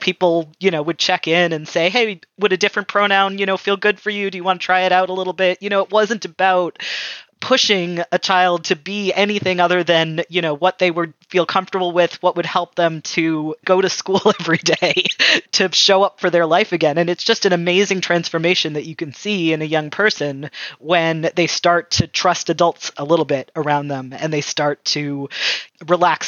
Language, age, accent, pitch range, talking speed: English, 20-39, American, 160-185 Hz, 220 wpm